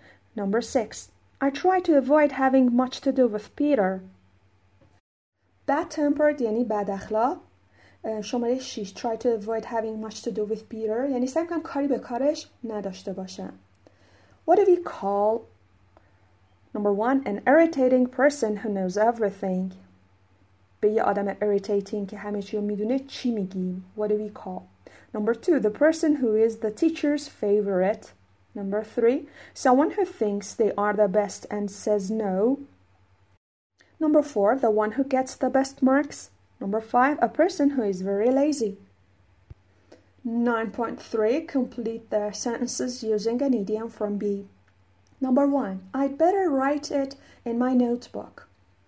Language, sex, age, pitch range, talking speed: Persian, female, 30-49, 190-260 Hz, 145 wpm